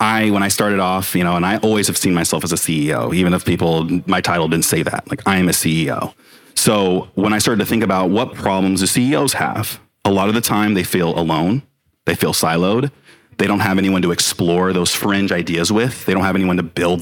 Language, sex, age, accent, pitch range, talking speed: English, male, 30-49, American, 90-105 Hz, 240 wpm